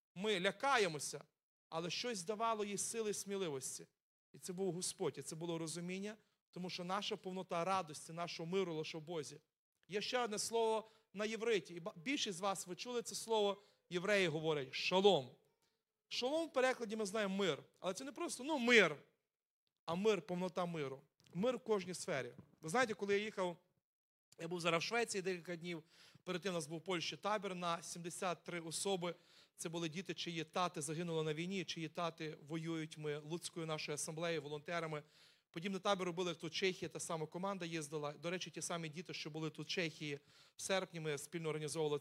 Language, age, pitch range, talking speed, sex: Ukrainian, 40-59, 165-205 Hz, 180 wpm, male